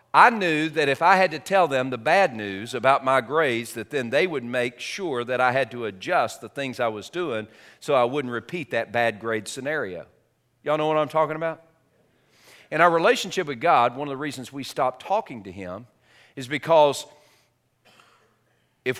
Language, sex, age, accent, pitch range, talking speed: English, male, 40-59, American, 125-170 Hz, 195 wpm